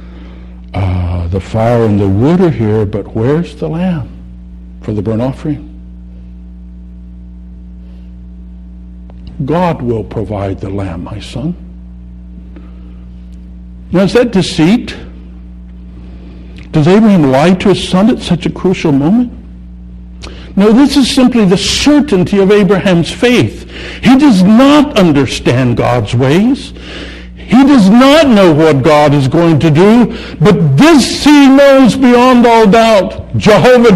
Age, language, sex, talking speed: 60-79, English, male, 125 wpm